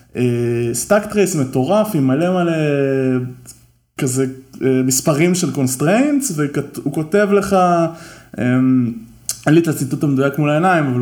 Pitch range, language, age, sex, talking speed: 120-150 Hz, Hebrew, 20-39, male, 115 wpm